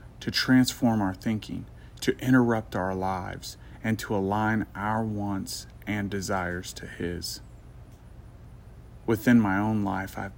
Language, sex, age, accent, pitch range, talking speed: English, male, 30-49, American, 95-110 Hz, 125 wpm